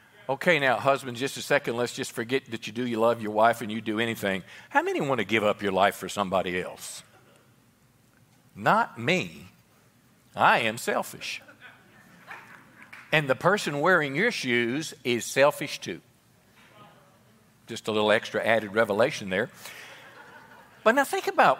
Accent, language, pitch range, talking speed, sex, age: American, English, 125-180 Hz, 155 wpm, male, 50-69